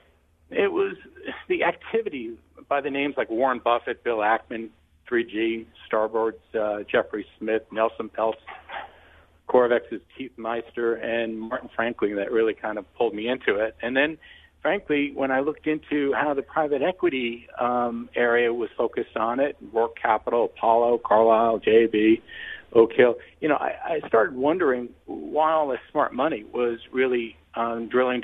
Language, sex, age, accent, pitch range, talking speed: English, male, 50-69, American, 115-145 Hz, 155 wpm